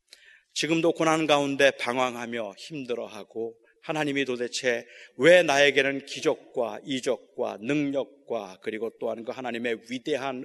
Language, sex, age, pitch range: Korean, male, 30-49, 120-165 Hz